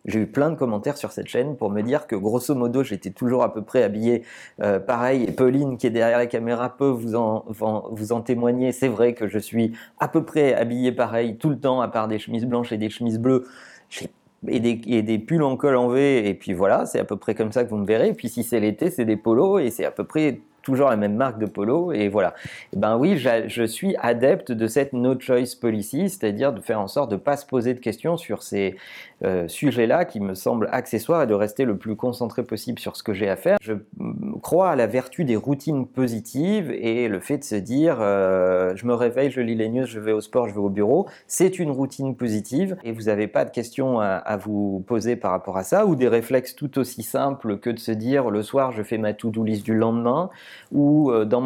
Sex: male